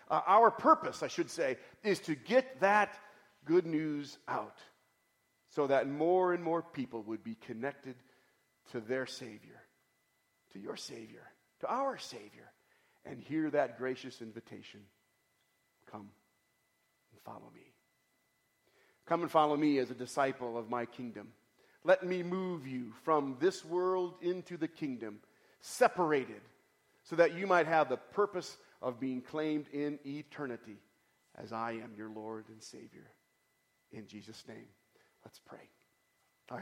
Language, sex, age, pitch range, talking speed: English, male, 40-59, 125-175 Hz, 140 wpm